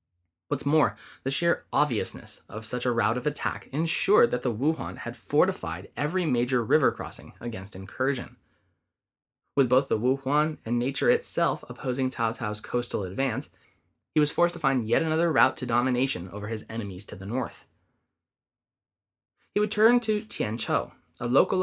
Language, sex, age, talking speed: English, male, 20-39, 165 wpm